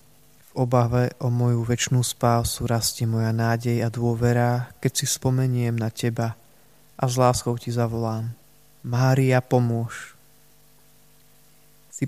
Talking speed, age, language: 115 wpm, 20-39, Slovak